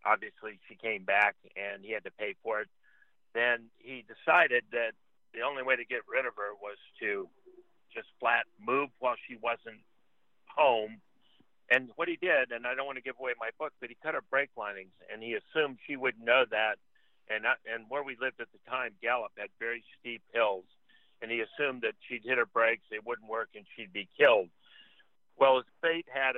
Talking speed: 205 wpm